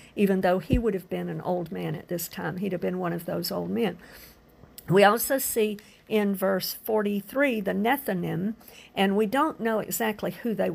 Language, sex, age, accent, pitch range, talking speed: English, female, 50-69, American, 180-220 Hz, 195 wpm